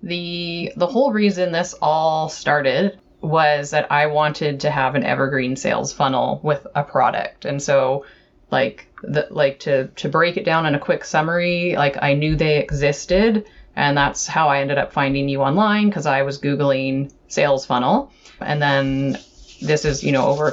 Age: 30-49